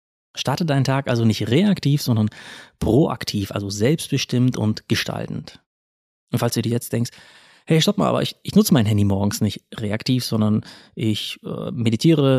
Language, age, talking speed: German, 30-49, 165 wpm